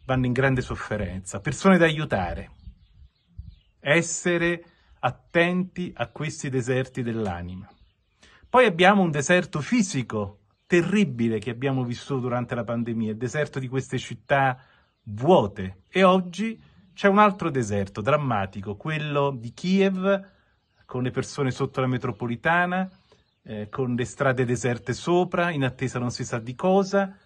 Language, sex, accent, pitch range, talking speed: Italian, male, native, 115-155 Hz, 130 wpm